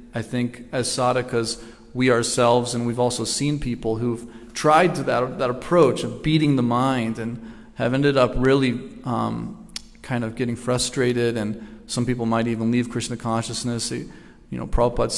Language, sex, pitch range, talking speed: English, male, 120-130 Hz, 165 wpm